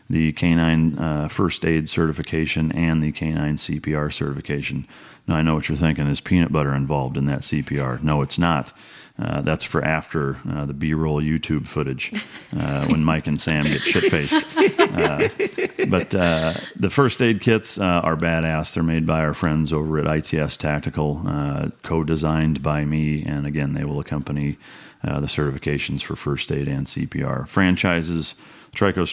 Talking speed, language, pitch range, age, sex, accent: 165 wpm, English, 70-80 Hz, 40-59, male, American